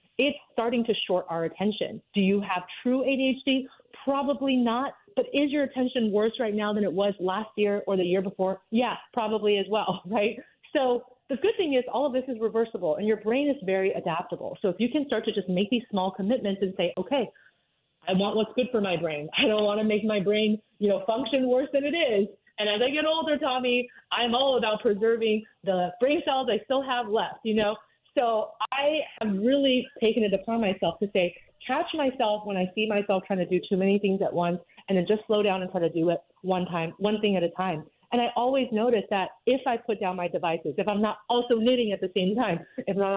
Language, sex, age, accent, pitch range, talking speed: English, female, 30-49, American, 195-250 Hz, 230 wpm